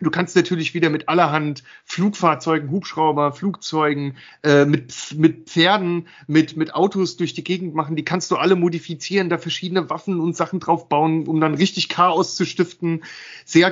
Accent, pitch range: German, 150-185 Hz